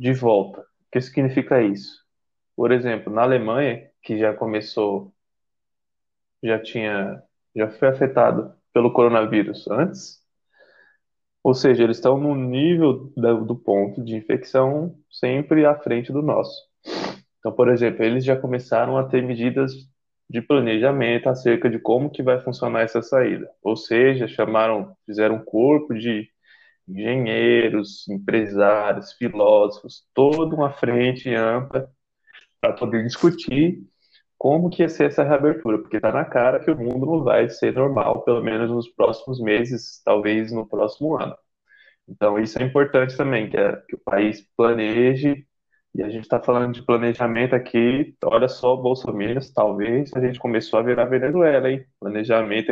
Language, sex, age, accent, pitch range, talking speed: Portuguese, male, 20-39, Brazilian, 110-135 Hz, 145 wpm